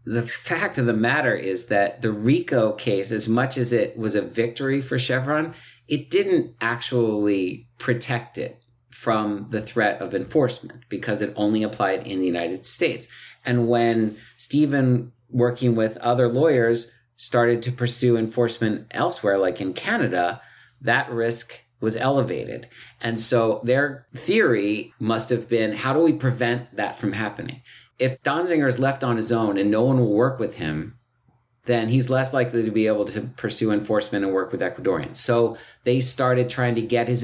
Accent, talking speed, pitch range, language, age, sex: American, 170 wpm, 115-130 Hz, English, 50-69, male